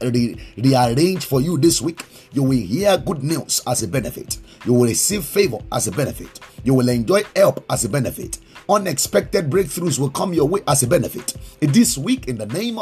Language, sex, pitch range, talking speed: English, male, 125-175 Hz, 195 wpm